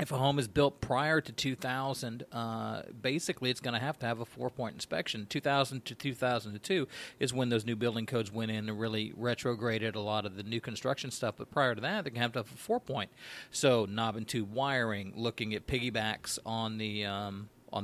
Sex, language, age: male, English, 40-59